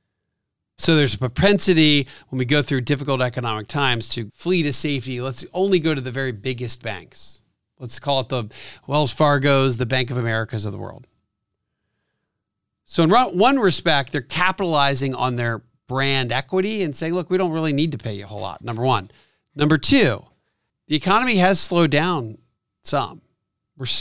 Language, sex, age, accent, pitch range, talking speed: English, male, 40-59, American, 120-155 Hz, 175 wpm